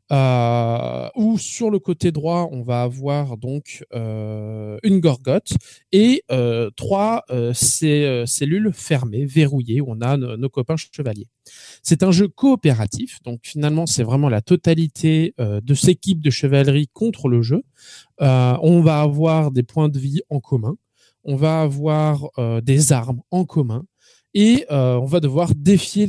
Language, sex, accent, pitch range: French, male, French, 125-160 Hz